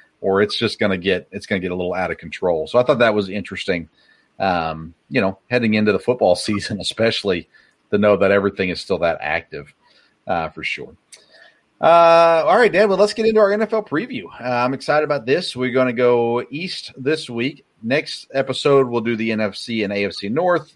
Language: English